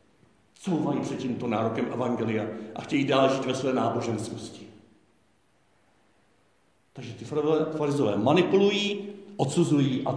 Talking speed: 105 wpm